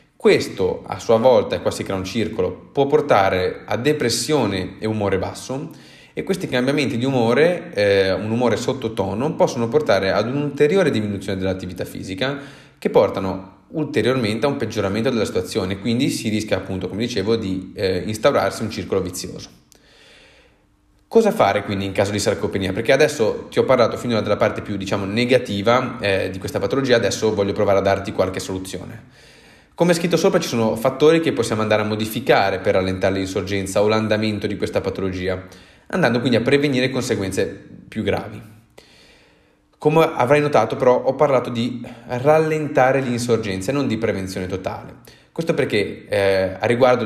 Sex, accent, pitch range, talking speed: male, native, 100-130 Hz, 165 wpm